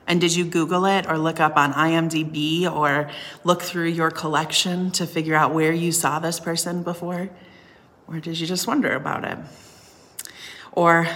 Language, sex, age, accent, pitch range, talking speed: English, female, 30-49, American, 155-175 Hz, 170 wpm